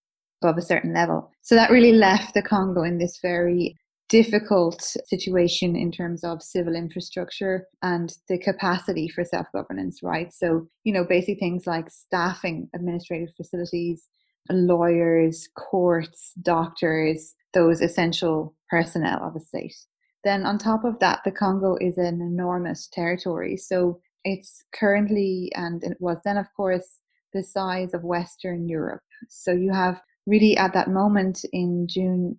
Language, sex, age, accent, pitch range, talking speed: English, female, 20-39, Irish, 175-200 Hz, 145 wpm